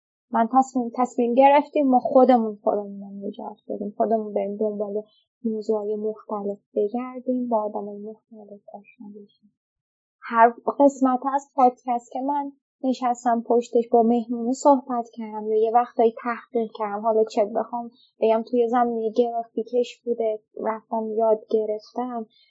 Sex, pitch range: female, 220-245 Hz